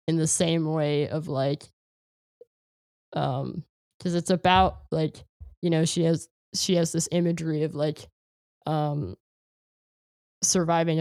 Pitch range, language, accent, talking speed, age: 140-165 Hz, English, American, 125 wpm, 10-29